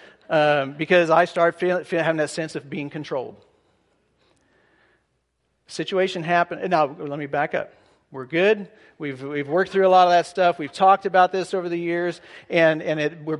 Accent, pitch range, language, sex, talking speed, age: American, 145-175 Hz, English, male, 180 wpm, 50-69